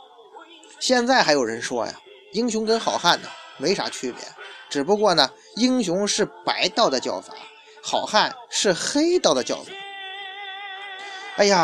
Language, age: Chinese, 20-39